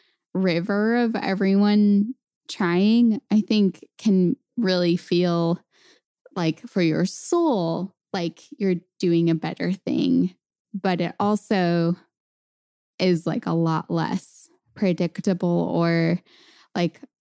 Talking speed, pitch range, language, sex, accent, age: 105 wpm, 165-195 Hz, English, female, American, 10-29